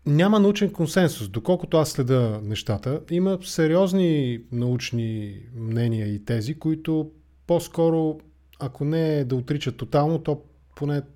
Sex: male